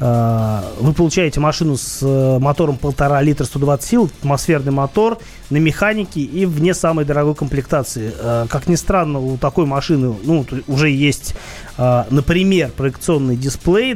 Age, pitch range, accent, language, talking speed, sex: 30-49, 130-160 Hz, native, Russian, 130 wpm, male